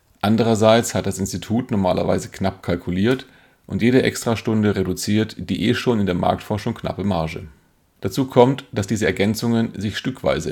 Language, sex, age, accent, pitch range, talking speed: German, male, 40-59, German, 95-115 Hz, 150 wpm